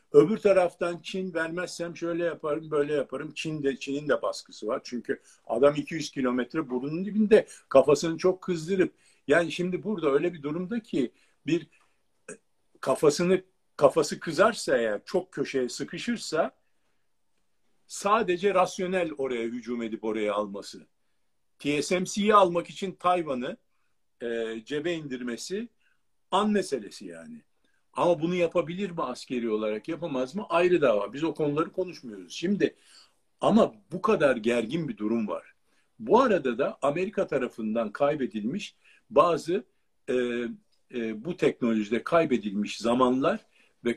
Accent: native